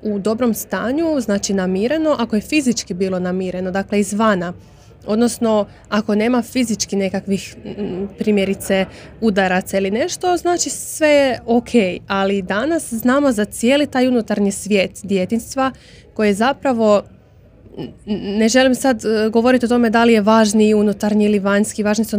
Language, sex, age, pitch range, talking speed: Croatian, female, 20-39, 195-235 Hz, 140 wpm